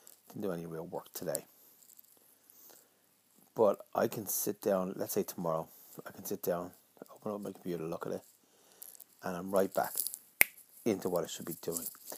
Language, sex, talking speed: English, male, 170 wpm